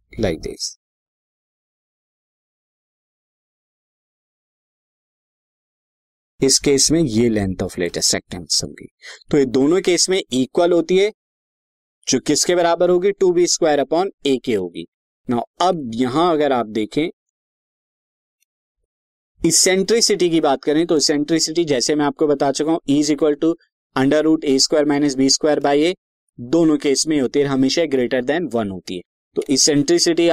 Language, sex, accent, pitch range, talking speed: Hindi, male, native, 135-165 Hz, 150 wpm